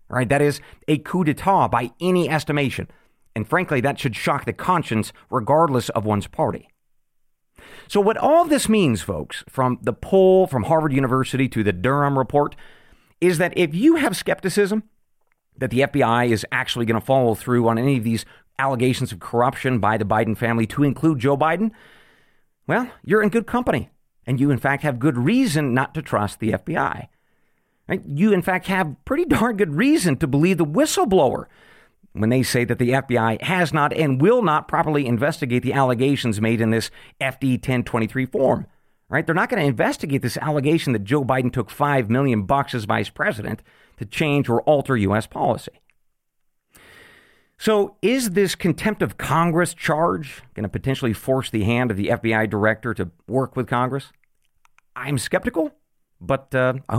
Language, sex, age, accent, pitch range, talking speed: English, male, 40-59, American, 120-165 Hz, 175 wpm